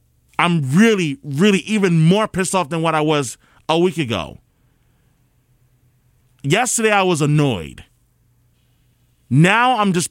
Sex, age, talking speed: male, 30-49, 125 wpm